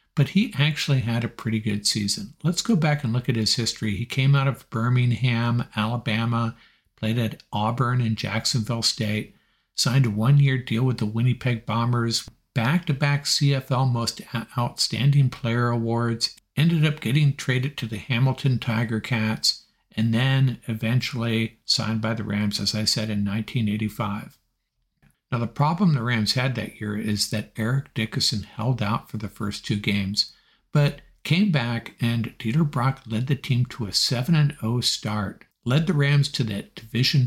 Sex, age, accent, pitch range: male, 60-79, American, 110-135 Hz